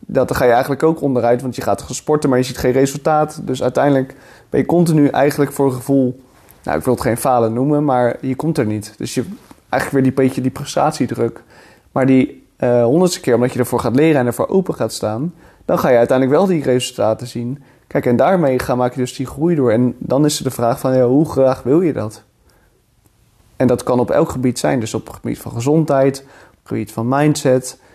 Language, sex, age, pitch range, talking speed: Dutch, male, 30-49, 125-140 Hz, 230 wpm